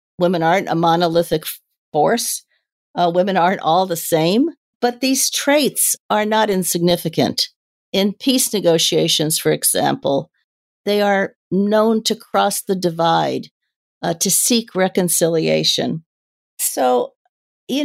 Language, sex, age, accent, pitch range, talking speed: English, female, 50-69, American, 175-240 Hz, 120 wpm